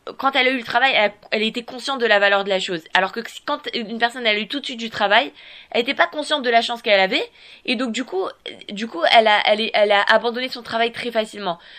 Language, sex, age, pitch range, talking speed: French, female, 20-39, 215-265 Hz, 275 wpm